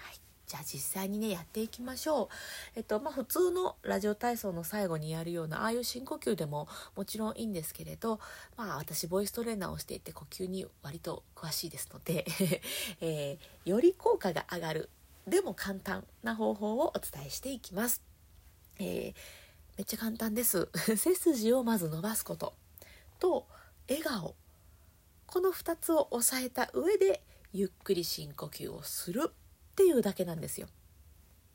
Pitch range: 165-240 Hz